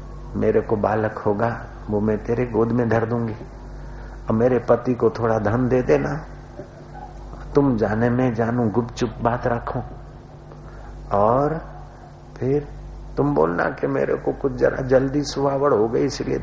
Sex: male